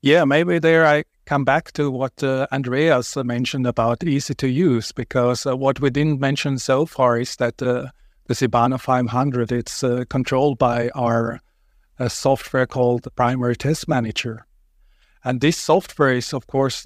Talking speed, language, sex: 160 wpm, English, male